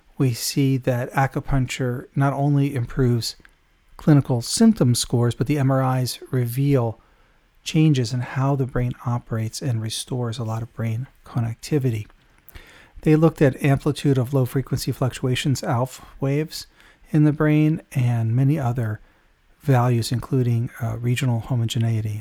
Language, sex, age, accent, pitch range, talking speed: English, male, 40-59, American, 120-145 Hz, 125 wpm